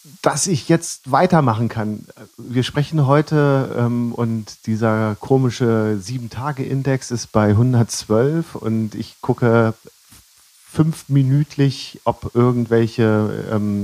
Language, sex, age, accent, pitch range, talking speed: German, male, 40-59, German, 100-120 Hz, 100 wpm